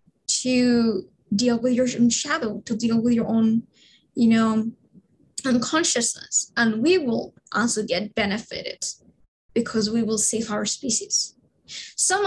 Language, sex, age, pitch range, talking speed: English, female, 10-29, 220-245 Hz, 130 wpm